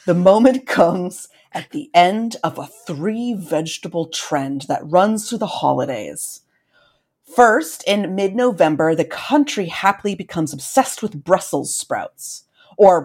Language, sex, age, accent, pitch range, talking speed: English, female, 30-49, American, 155-220 Hz, 125 wpm